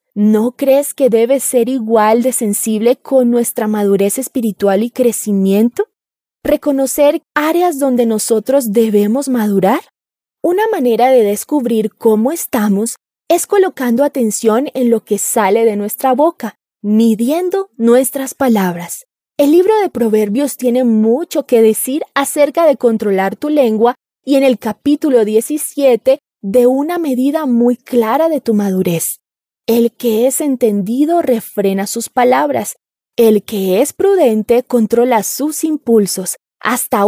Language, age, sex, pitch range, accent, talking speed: Spanish, 20-39, female, 220-290 Hz, Colombian, 130 wpm